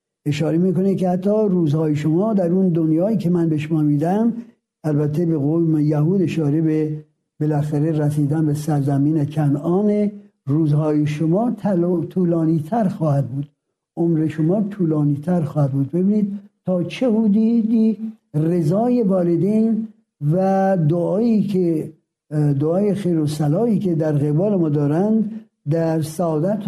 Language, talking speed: Persian, 125 wpm